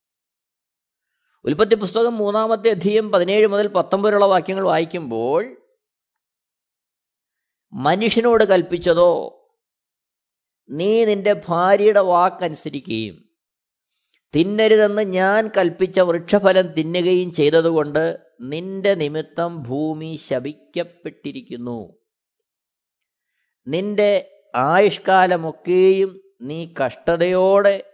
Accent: native